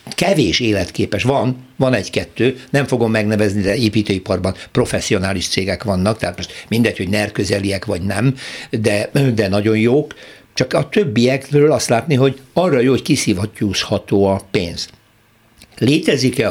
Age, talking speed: 60-79, 140 wpm